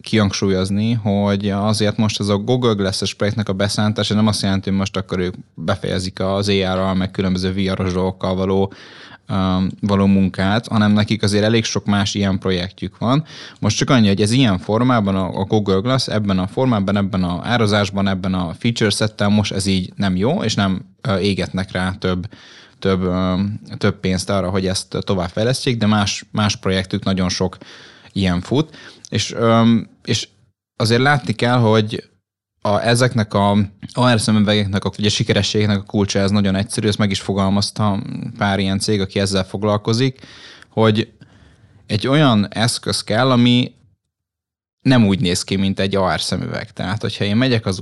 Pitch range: 95-115 Hz